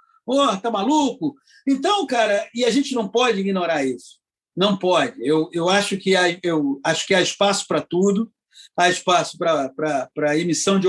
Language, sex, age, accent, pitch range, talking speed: Portuguese, male, 50-69, Brazilian, 175-225 Hz, 180 wpm